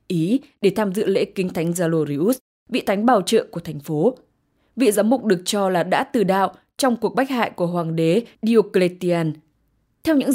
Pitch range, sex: 170-230 Hz, female